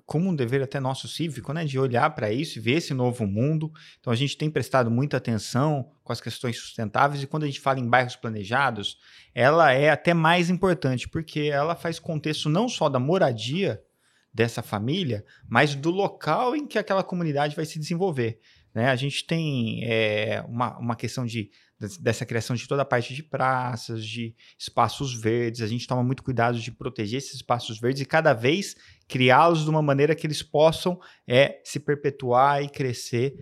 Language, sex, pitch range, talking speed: Portuguese, male, 120-155 Hz, 185 wpm